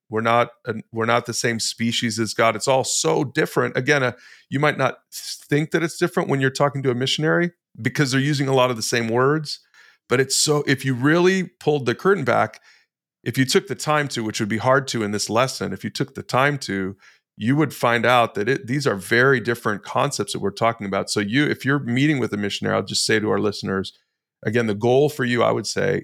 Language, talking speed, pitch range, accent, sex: English, 240 wpm, 105-130 Hz, American, male